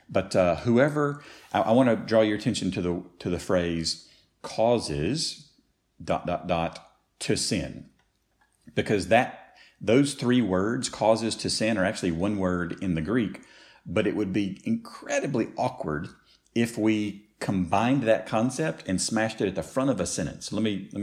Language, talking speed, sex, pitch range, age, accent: English, 170 wpm, male, 85-110 Hz, 50-69, American